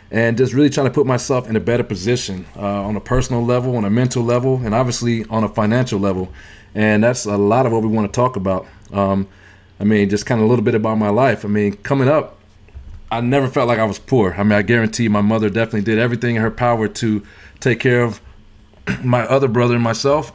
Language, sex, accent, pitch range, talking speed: English, male, American, 100-120 Hz, 240 wpm